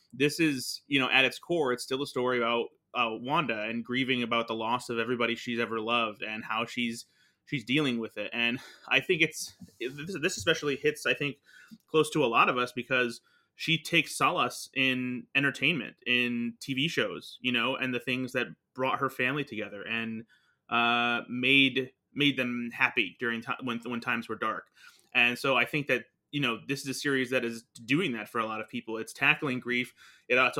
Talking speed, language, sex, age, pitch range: 200 wpm, English, male, 30-49, 120-140 Hz